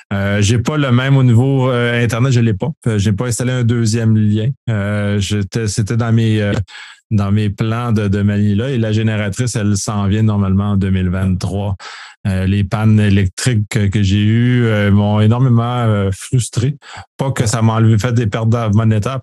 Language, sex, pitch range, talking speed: French, male, 105-125 Hz, 195 wpm